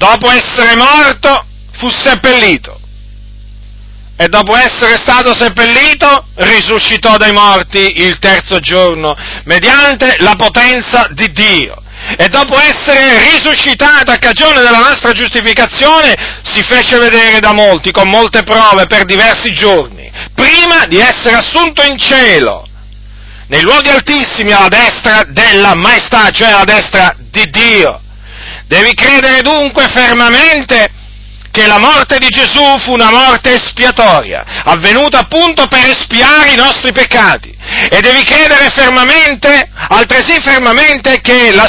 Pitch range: 200-275 Hz